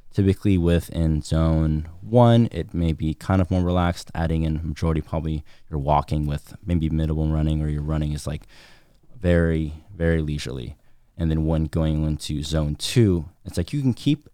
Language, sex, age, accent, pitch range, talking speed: English, male, 20-39, American, 75-85 Hz, 170 wpm